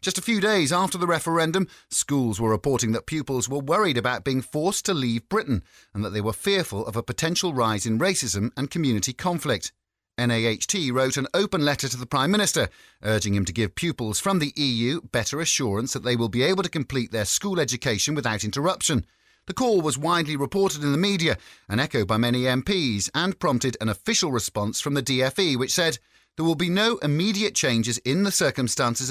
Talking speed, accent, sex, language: 200 wpm, British, male, English